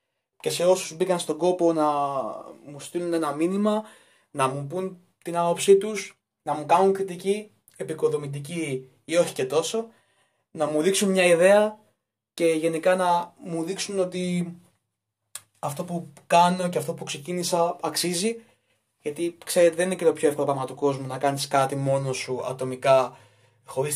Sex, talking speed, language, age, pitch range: male, 160 wpm, Greek, 20-39, 135-180 Hz